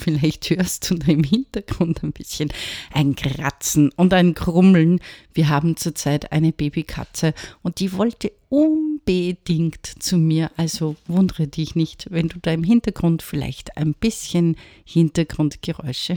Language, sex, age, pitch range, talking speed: German, female, 50-69, 155-195 Hz, 135 wpm